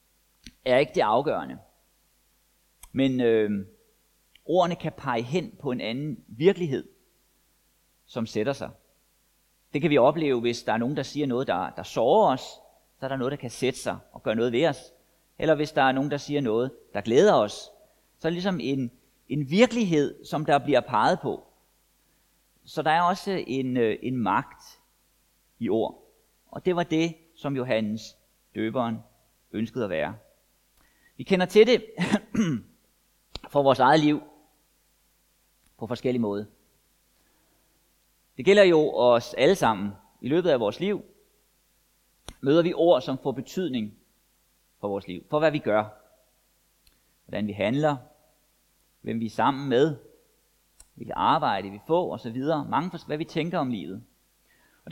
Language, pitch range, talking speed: Danish, 110-160 Hz, 155 wpm